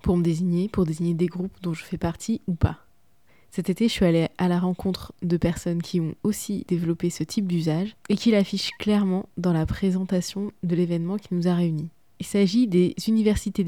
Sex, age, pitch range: female, 20-39, 175-205 Hz